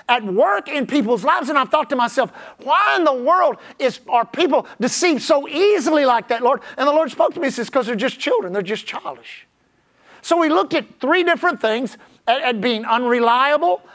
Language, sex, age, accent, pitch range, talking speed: English, male, 50-69, American, 240-315 Hz, 210 wpm